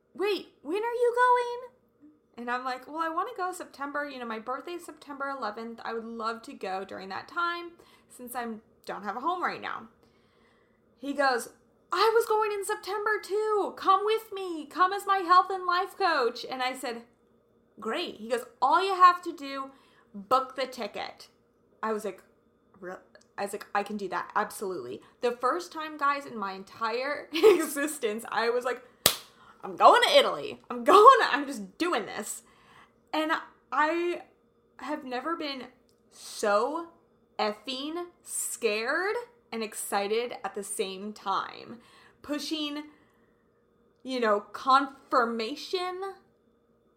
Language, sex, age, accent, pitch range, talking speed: English, female, 20-39, American, 230-345 Hz, 150 wpm